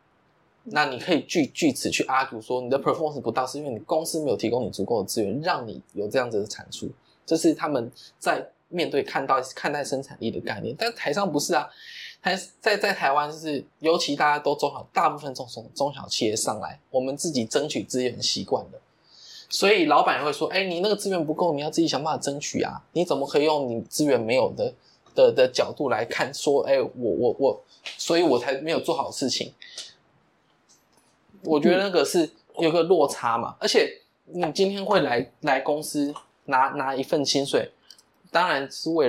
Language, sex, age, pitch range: Chinese, male, 20-39, 140-230 Hz